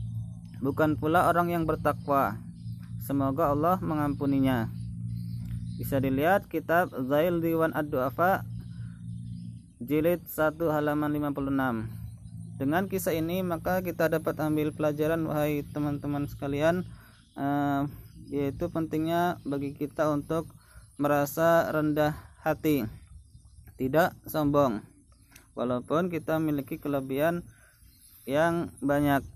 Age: 20-39